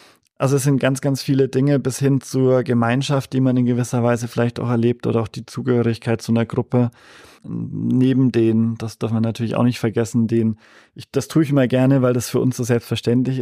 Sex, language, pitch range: male, German, 115-125 Hz